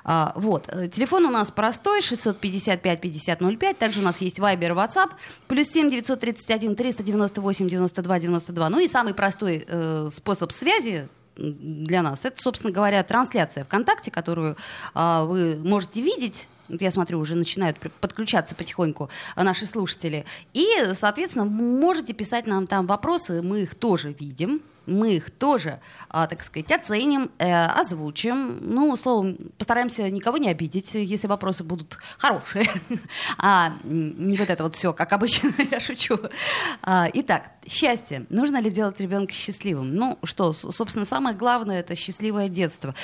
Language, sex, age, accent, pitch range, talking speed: Russian, female, 20-39, native, 175-240 Hz, 130 wpm